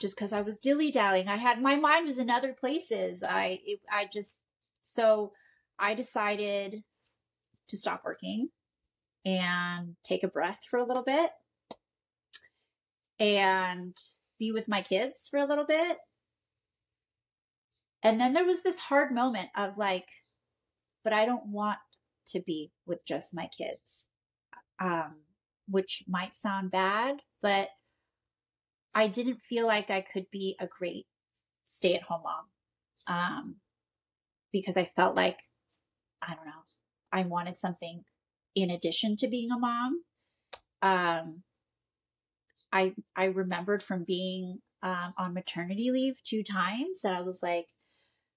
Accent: American